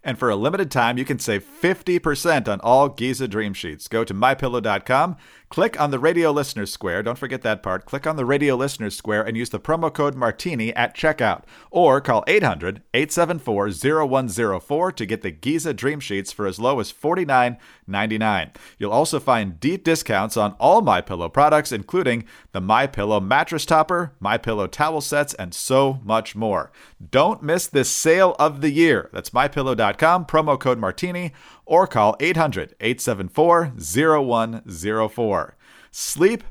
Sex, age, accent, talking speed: male, 40-59, American, 165 wpm